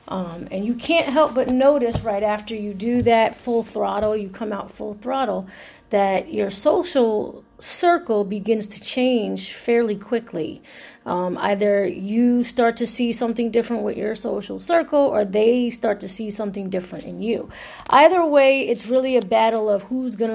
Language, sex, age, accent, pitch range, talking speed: English, female, 30-49, American, 190-235 Hz, 170 wpm